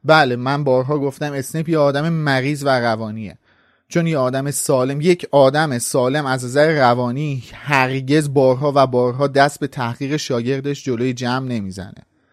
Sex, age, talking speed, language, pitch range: male, 30-49, 150 wpm, Persian, 130-165 Hz